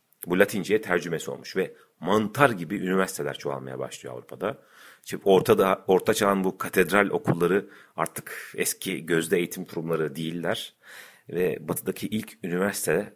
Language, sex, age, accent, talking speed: Turkish, male, 40-59, native, 130 wpm